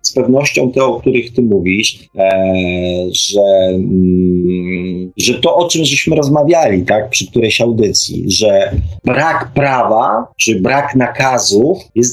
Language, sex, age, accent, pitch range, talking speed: Polish, male, 40-59, native, 95-130 Hz, 125 wpm